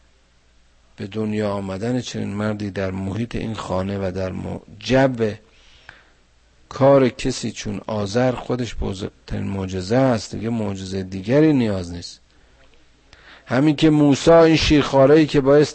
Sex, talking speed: male, 120 wpm